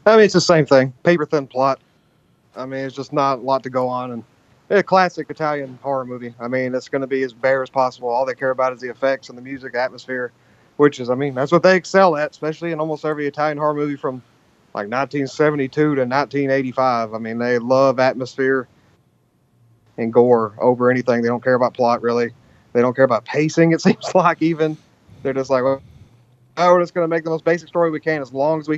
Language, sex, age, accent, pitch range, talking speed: English, male, 30-49, American, 130-155 Hz, 230 wpm